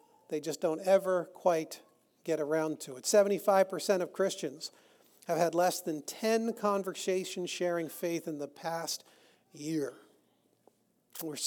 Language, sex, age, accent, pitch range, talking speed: English, male, 40-59, American, 165-210 Hz, 130 wpm